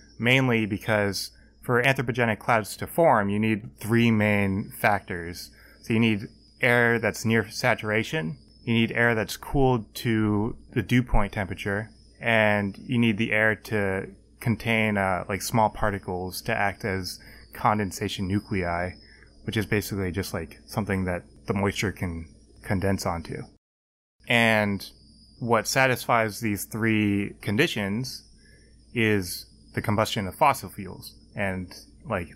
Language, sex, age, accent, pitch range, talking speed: English, male, 20-39, American, 100-115 Hz, 130 wpm